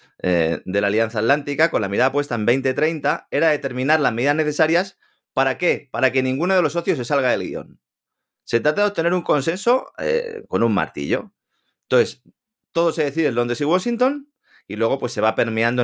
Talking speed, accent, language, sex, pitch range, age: 190 wpm, Spanish, Spanish, male, 105-165 Hz, 30-49